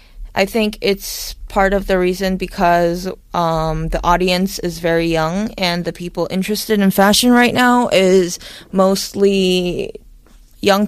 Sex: female